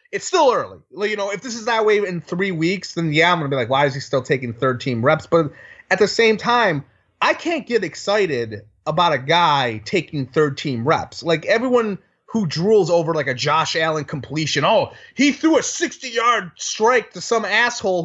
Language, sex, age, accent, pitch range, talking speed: English, male, 30-49, American, 150-220 Hz, 205 wpm